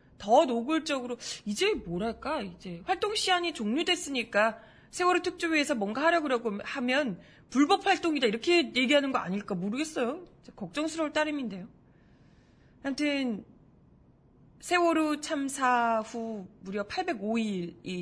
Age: 20-39